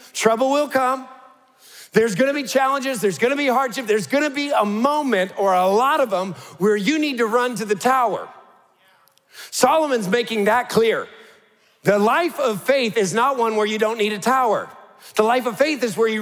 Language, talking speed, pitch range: English, 205 wpm, 205-270 Hz